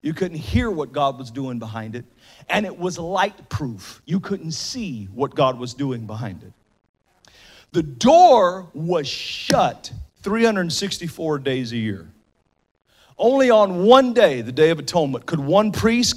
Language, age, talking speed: English, 40-59, 155 wpm